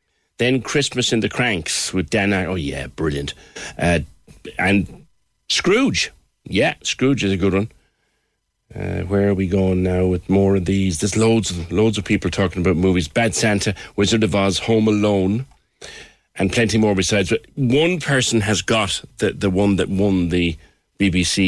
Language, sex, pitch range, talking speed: English, male, 90-115 Hz, 175 wpm